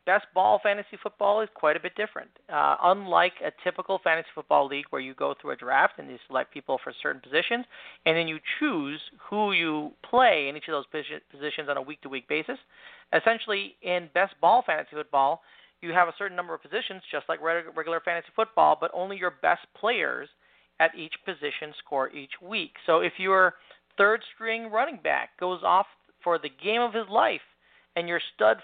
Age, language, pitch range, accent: 40-59, English, 145-195 Hz, American